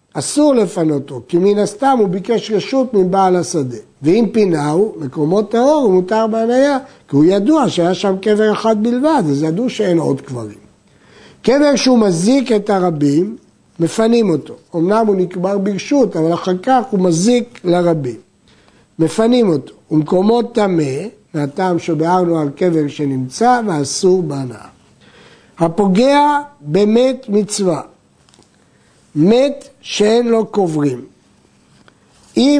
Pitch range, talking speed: 165-230 Hz, 120 wpm